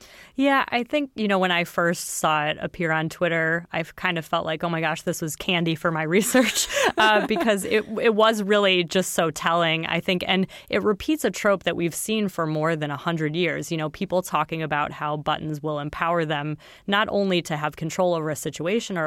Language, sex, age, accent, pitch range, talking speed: English, female, 20-39, American, 155-180 Hz, 220 wpm